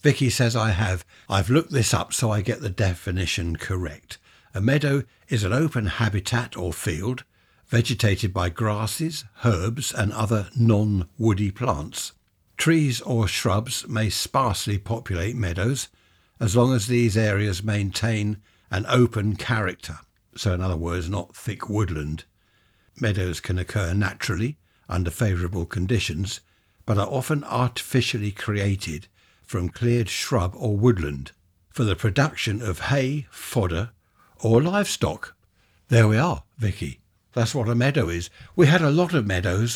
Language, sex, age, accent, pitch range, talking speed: English, male, 60-79, British, 95-120 Hz, 140 wpm